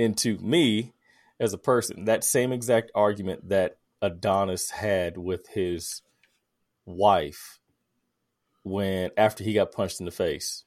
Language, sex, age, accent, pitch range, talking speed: English, male, 30-49, American, 85-110 Hz, 130 wpm